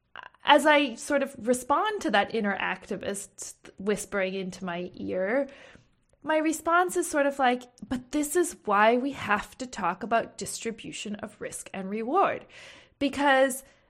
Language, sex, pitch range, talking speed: English, female, 210-285 Hz, 145 wpm